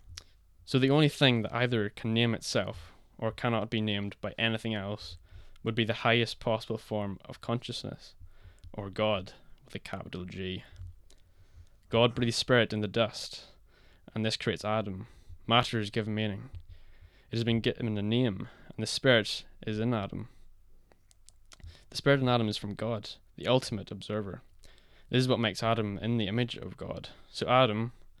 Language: English